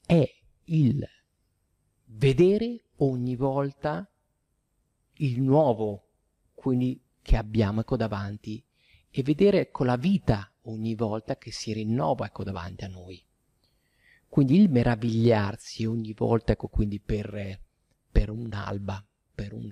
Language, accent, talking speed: Italian, native, 115 wpm